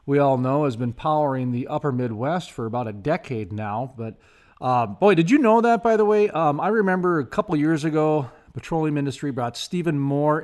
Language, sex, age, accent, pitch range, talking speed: English, male, 40-59, American, 120-155 Hz, 205 wpm